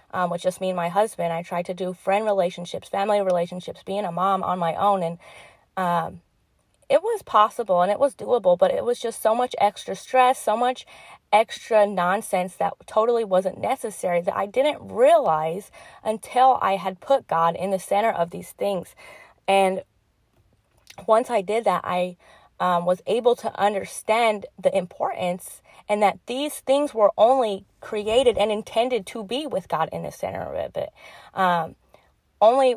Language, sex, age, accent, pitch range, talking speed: English, female, 30-49, American, 180-235 Hz, 170 wpm